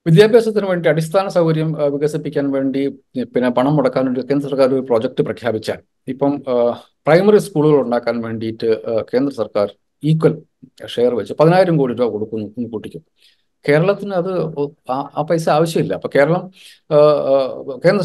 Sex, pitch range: male, 135-175 Hz